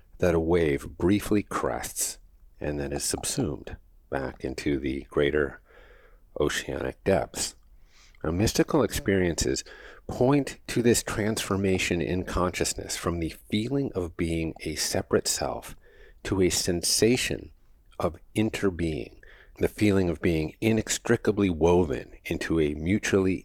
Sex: male